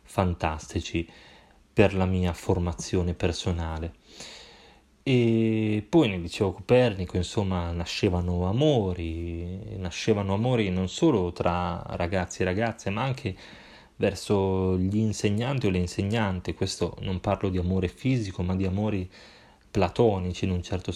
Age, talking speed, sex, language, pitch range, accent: 20-39, 125 wpm, male, Italian, 90-105 Hz, native